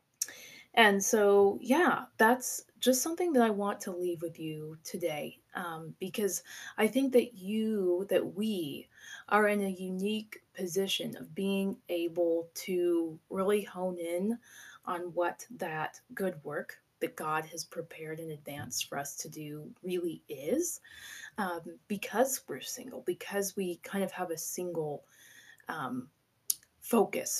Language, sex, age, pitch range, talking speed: English, female, 20-39, 170-215 Hz, 140 wpm